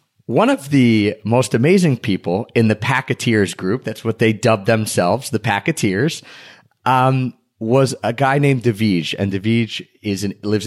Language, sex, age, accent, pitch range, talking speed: English, male, 30-49, American, 105-135 Hz, 150 wpm